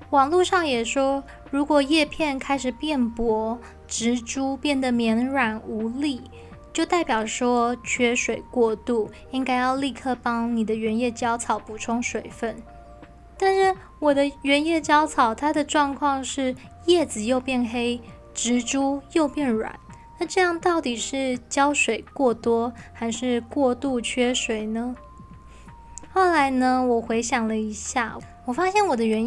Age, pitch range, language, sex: 10-29, 230-275 Hz, Chinese, female